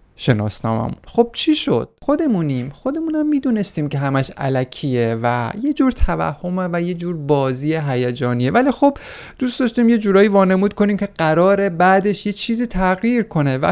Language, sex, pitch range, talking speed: Persian, male, 135-190 Hz, 155 wpm